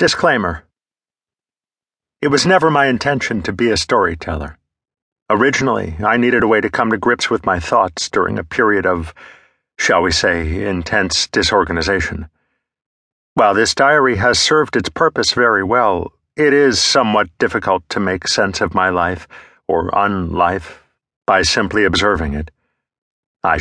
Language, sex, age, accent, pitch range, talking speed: English, male, 50-69, American, 85-110 Hz, 145 wpm